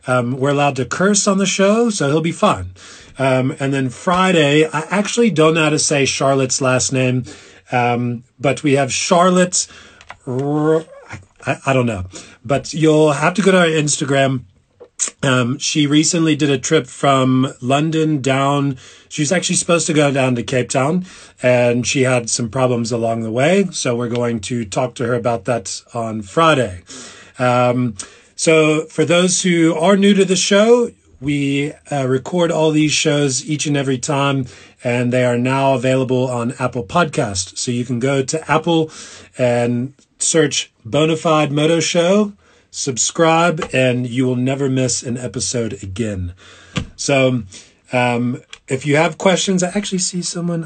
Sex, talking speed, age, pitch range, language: male, 165 wpm, 30-49, 125-160 Hz, English